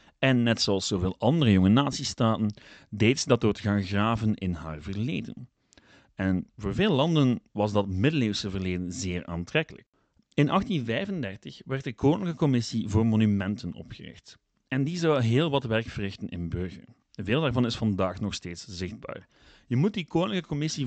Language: Dutch